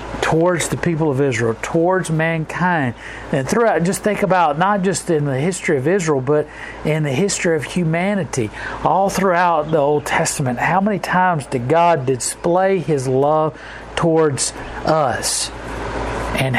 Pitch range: 135-175 Hz